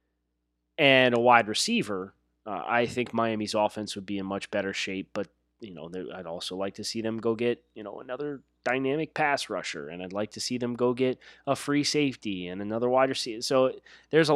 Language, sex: English, male